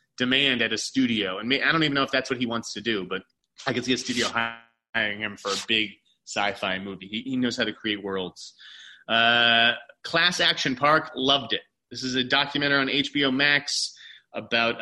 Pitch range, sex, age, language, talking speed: 115-145 Hz, male, 30-49, English, 205 wpm